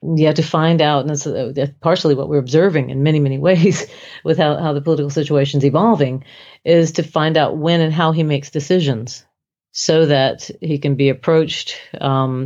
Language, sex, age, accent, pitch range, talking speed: English, female, 40-59, American, 140-165 Hz, 195 wpm